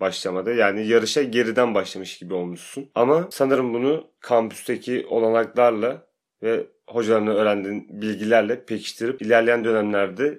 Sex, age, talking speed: male, 30-49, 110 wpm